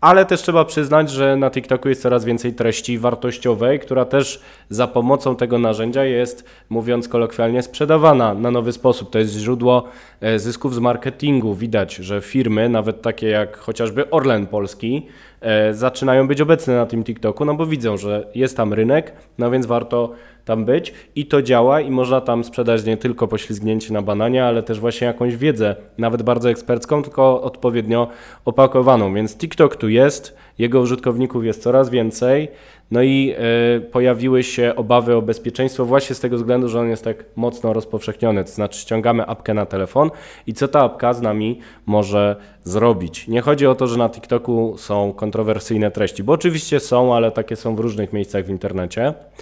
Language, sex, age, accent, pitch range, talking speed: Polish, male, 20-39, native, 110-130 Hz, 175 wpm